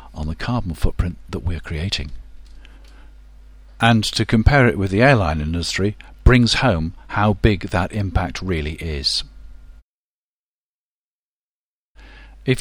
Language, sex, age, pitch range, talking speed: English, male, 50-69, 85-120 Hz, 115 wpm